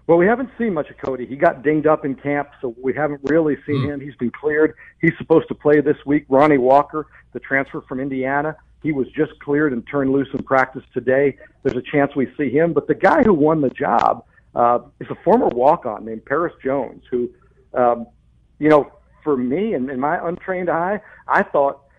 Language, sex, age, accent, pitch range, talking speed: English, male, 50-69, American, 135-165 Hz, 215 wpm